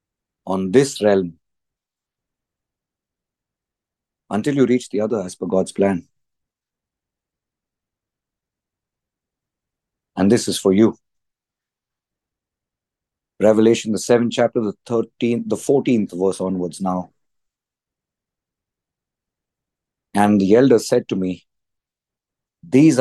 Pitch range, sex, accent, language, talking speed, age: 90-120 Hz, male, Indian, English, 90 wpm, 50-69